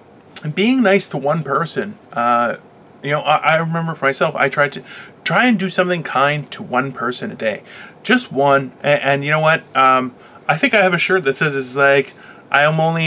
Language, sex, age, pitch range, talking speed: English, male, 20-39, 135-185 Hz, 215 wpm